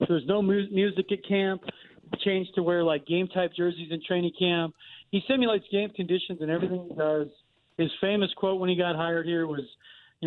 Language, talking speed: English, 205 wpm